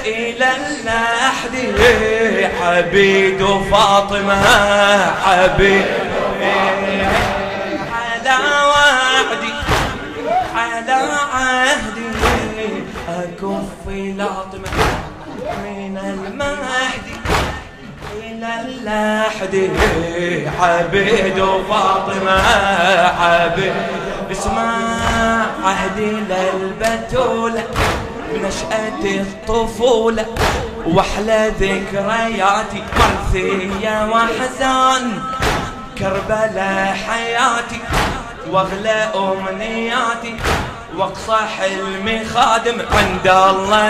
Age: 20-39